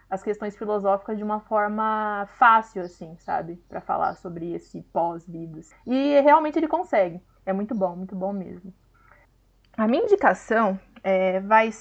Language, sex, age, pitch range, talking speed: Portuguese, female, 20-39, 190-240 Hz, 150 wpm